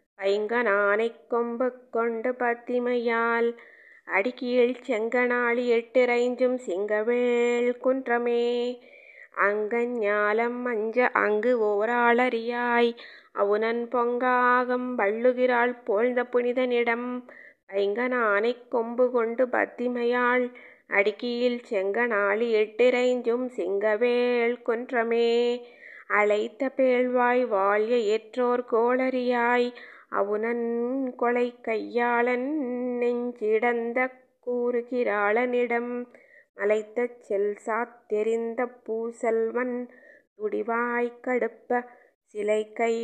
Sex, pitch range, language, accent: female, 230-250 Hz, Tamil, native